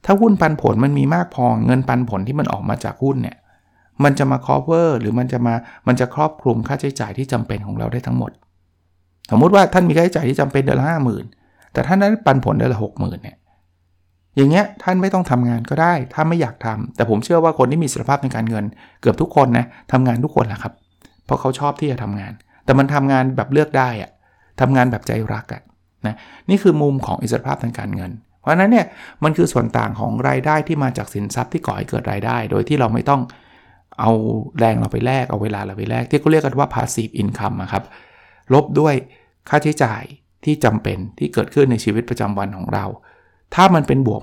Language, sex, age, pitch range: Thai, male, 60-79, 110-145 Hz